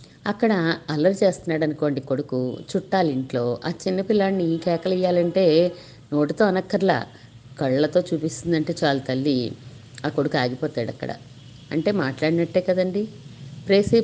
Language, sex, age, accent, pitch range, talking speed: Telugu, female, 50-69, native, 135-185 Hz, 105 wpm